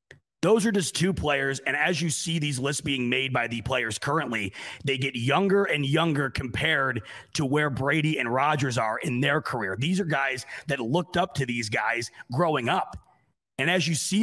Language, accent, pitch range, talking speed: English, American, 120-165 Hz, 200 wpm